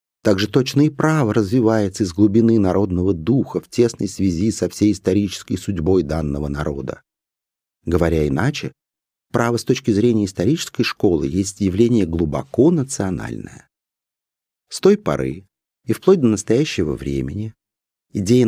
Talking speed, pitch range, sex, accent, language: 130 wpm, 90-125 Hz, male, native, Russian